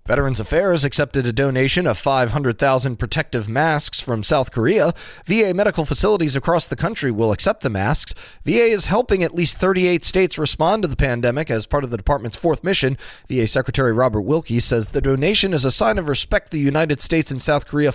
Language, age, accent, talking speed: English, 30-49, American, 195 wpm